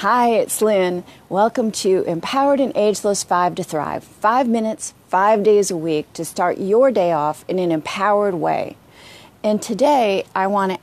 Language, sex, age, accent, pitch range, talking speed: English, female, 40-59, American, 175-215 Hz, 165 wpm